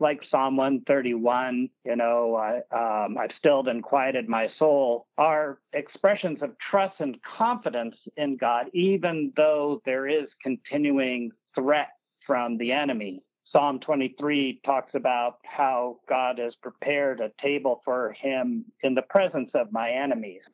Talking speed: 135 wpm